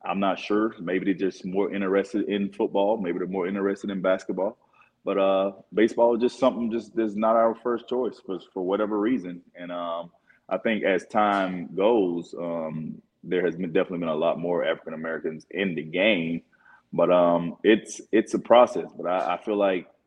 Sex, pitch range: male, 85-105 Hz